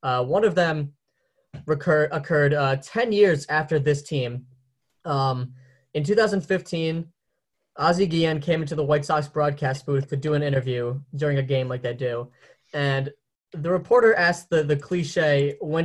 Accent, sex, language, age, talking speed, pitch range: American, male, English, 10-29, 155 wpm, 135-165 Hz